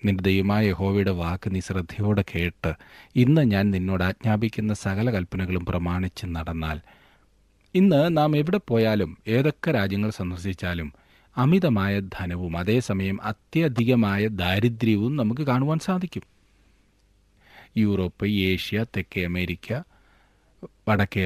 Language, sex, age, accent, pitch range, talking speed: Malayalam, male, 40-59, native, 90-115 Hz, 95 wpm